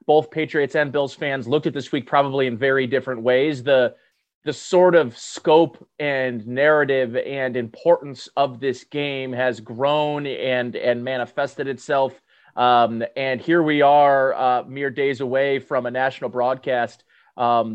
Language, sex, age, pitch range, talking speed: English, male, 30-49, 125-160 Hz, 155 wpm